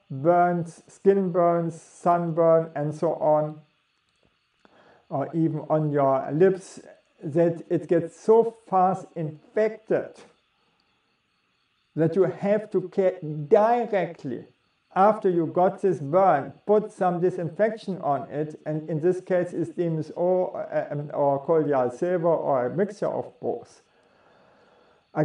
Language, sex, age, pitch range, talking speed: English, male, 50-69, 155-185 Hz, 115 wpm